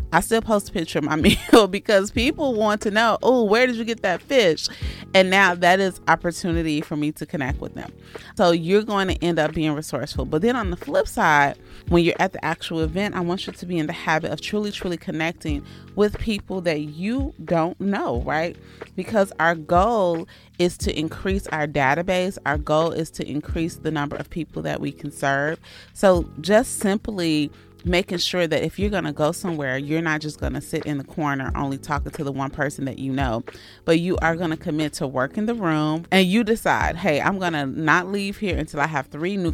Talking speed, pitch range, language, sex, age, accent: 225 wpm, 150-190 Hz, English, female, 30-49, American